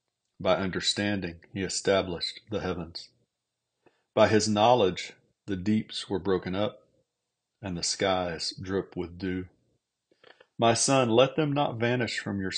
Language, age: English, 40-59